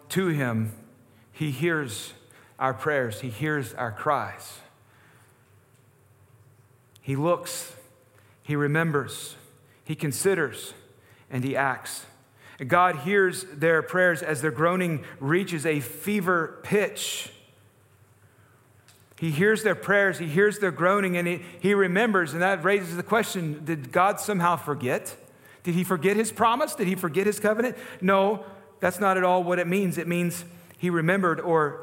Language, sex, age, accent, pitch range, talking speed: English, male, 40-59, American, 125-180 Hz, 140 wpm